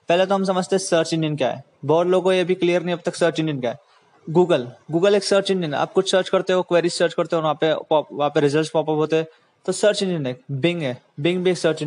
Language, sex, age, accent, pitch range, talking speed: Hindi, male, 20-39, native, 155-185 Hz, 275 wpm